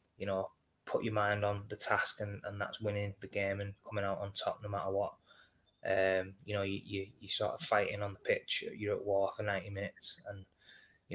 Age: 20-39